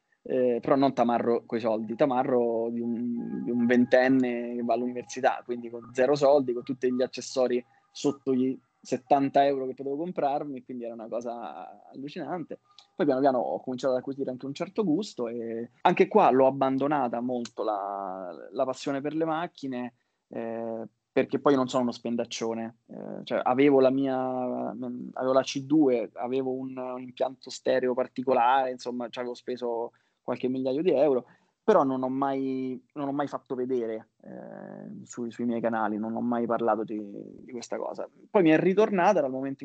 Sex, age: male, 20-39